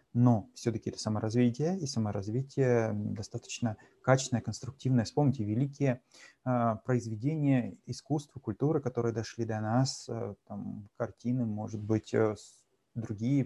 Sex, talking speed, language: male, 120 wpm, Russian